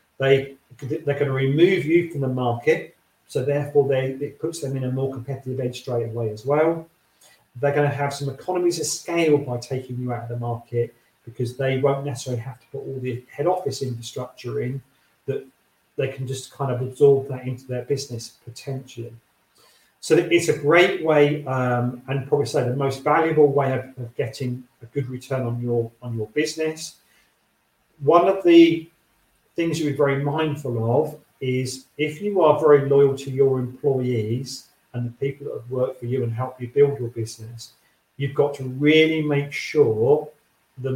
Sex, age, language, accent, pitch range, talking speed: male, 40-59, English, British, 125-145 Hz, 185 wpm